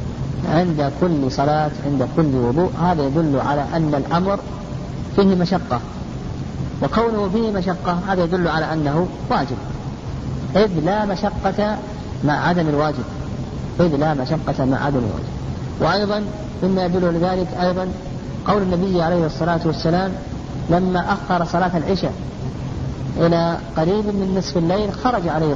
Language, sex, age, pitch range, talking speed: Arabic, female, 40-59, 145-185 Hz, 125 wpm